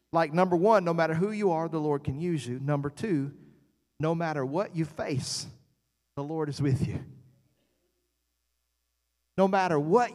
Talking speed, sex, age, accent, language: 165 wpm, male, 40-59, American, English